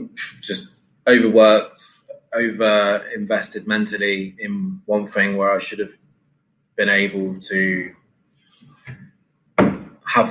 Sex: male